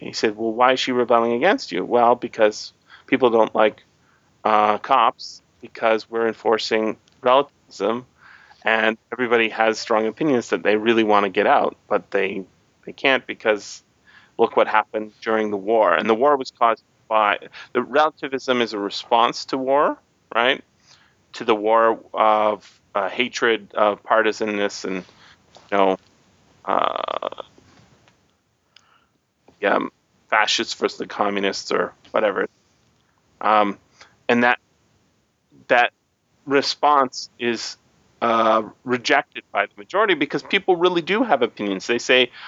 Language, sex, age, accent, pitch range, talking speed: English, male, 30-49, American, 105-140 Hz, 135 wpm